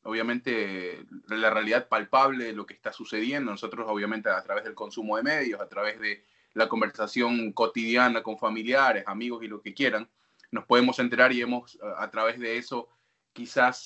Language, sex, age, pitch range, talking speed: Spanish, male, 20-39, 110-130 Hz, 175 wpm